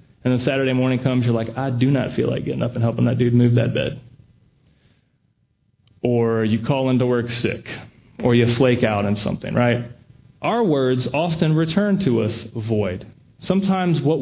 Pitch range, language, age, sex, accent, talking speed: 125-170 Hz, English, 30-49, male, American, 180 wpm